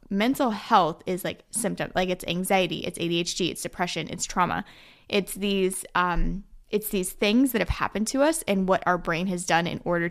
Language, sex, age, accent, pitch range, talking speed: English, female, 20-39, American, 175-215 Hz, 195 wpm